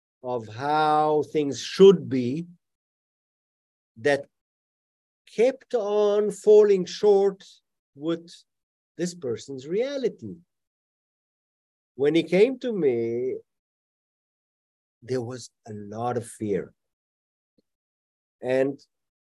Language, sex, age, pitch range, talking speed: English, male, 50-69, 110-175 Hz, 80 wpm